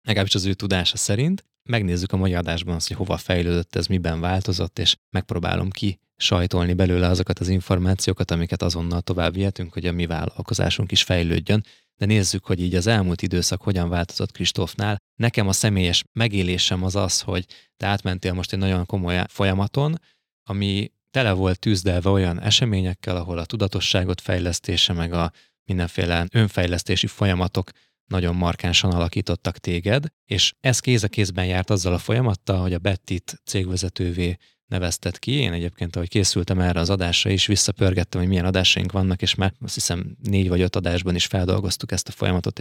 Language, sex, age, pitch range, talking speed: Hungarian, male, 20-39, 90-100 Hz, 165 wpm